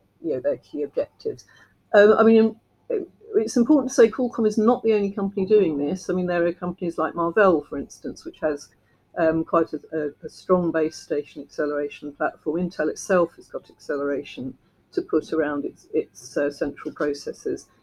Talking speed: 180 wpm